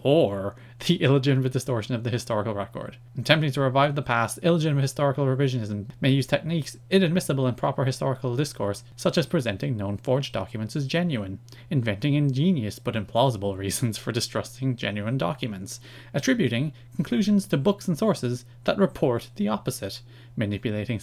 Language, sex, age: English, male, 30-49